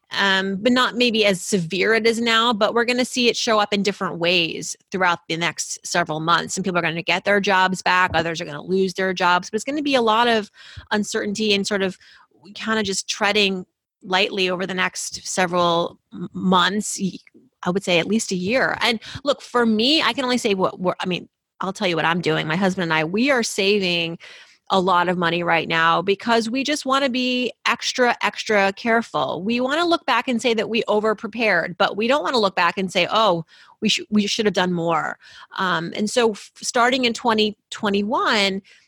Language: English